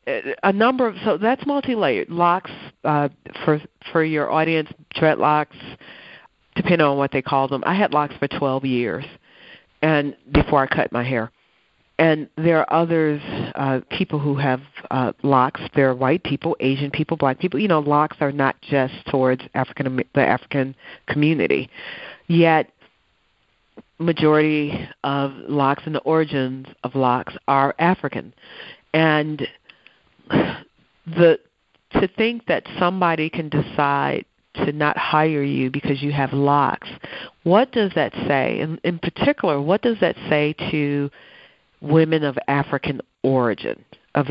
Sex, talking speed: female, 140 wpm